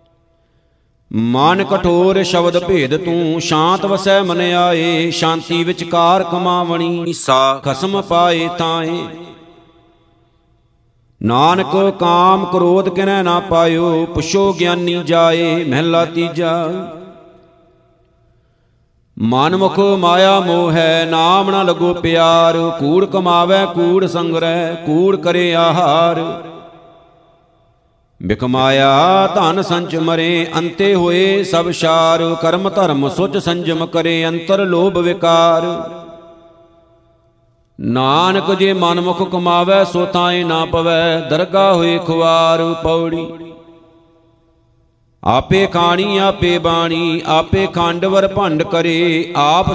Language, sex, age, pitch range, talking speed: Punjabi, male, 50-69, 165-180 Hz, 95 wpm